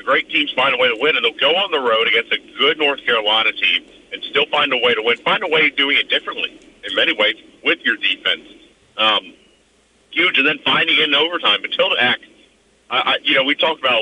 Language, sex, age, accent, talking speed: English, male, 50-69, American, 240 wpm